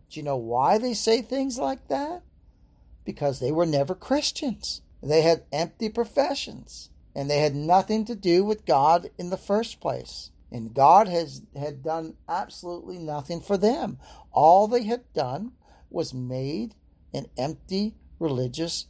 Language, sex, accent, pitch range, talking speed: English, male, American, 125-185 Hz, 150 wpm